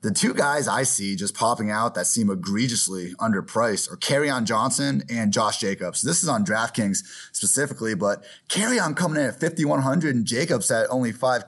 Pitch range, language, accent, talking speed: 110-140 Hz, English, American, 190 wpm